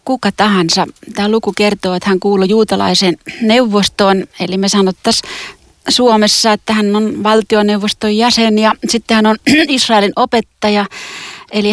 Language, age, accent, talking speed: Finnish, 30-49, native, 135 wpm